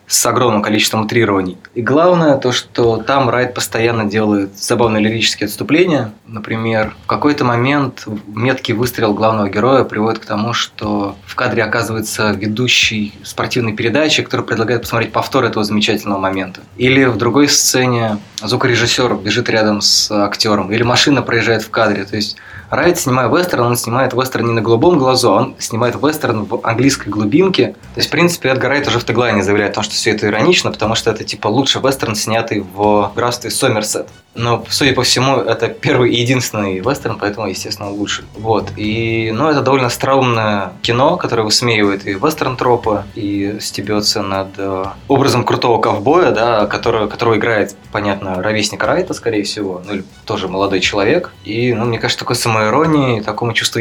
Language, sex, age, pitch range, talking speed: Russian, male, 20-39, 105-125 Hz, 165 wpm